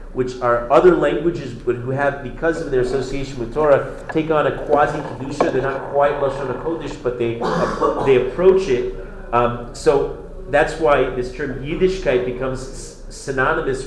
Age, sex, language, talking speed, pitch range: 40-59, male, English, 160 wpm, 130-160 Hz